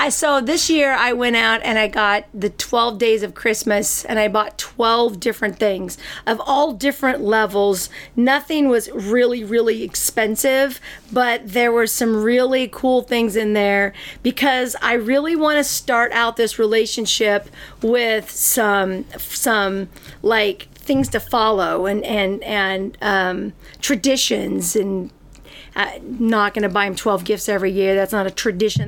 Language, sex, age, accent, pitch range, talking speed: English, female, 40-59, American, 210-260 Hz, 150 wpm